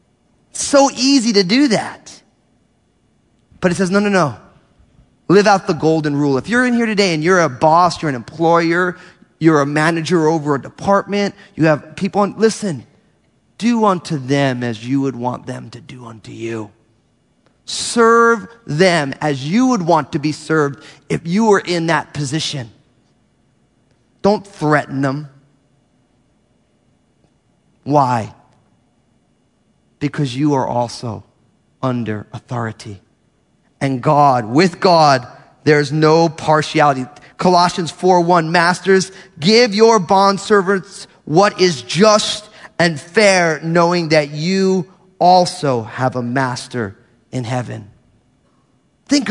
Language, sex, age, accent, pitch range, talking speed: English, male, 30-49, American, 140-195 Hz, 125 wpm